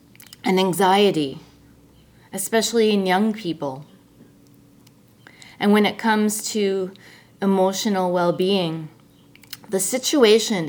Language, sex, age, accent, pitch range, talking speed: English, female, 30-49, American, 155-200 Hz, 85 wpm